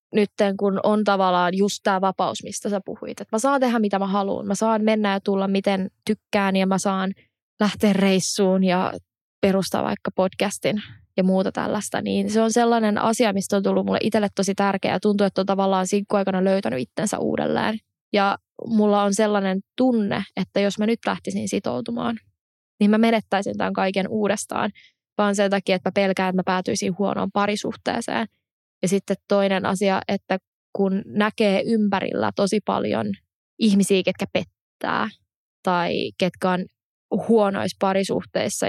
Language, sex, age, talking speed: Finnish, female, 20-39, 160 wpm